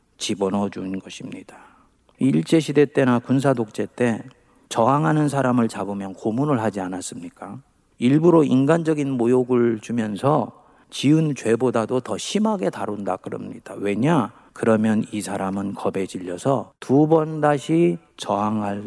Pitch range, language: 105-155 Hz, Korean